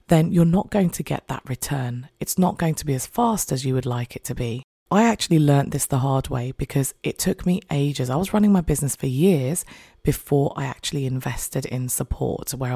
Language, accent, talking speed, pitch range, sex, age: English, British, 225 wpm, 130-175 Hz, female, 20-39